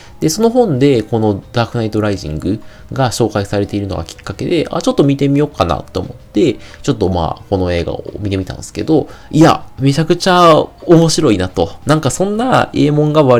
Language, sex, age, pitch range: Japanese, male, 20-39, 95-130 Hz